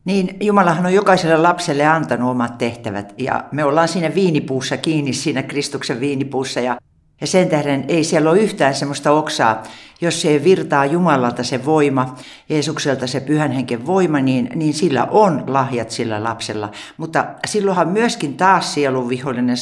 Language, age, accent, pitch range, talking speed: Finnish, 60-79, native, 125-155 Hz, 155 wpm